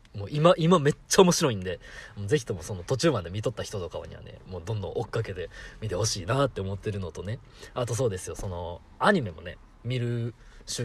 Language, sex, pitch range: Japanese, male, 95-130 Hz